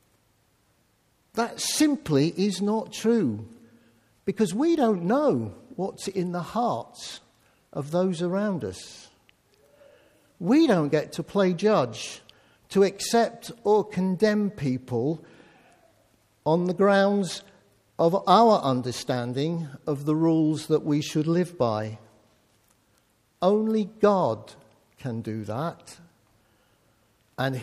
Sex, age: male, 50-69